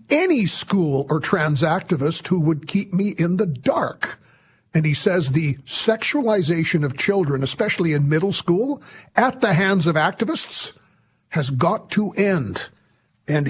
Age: 50-69